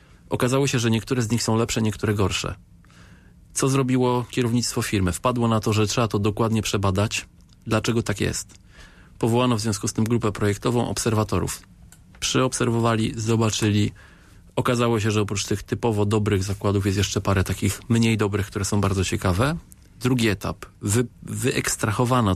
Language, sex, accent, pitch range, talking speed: Polish, male, native, 100-115 Hz, 155 wpm